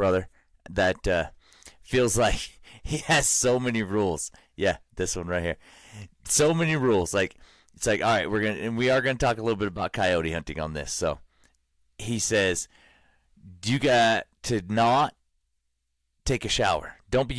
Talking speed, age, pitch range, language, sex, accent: 185 wpm, 30-49, 90-115 Hz, English, male, American